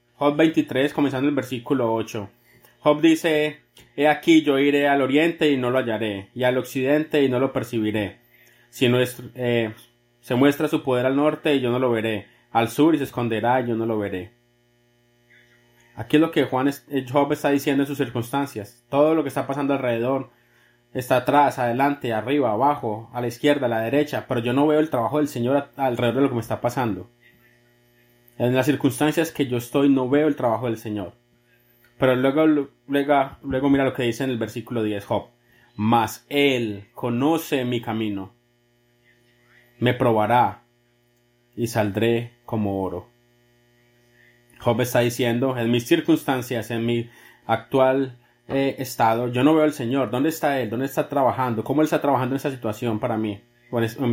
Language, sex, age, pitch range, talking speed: English, male, 20-39, 120-140 Hz, 180 wpm